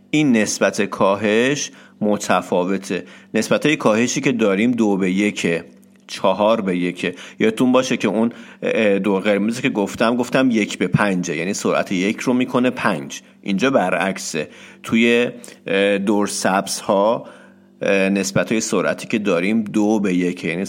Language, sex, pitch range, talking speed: Persian, male, 95-125 Hz, 135 wpm